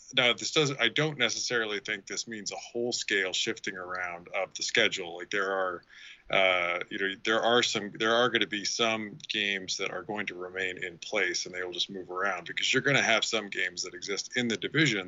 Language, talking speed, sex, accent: English, 230 wpm, male, American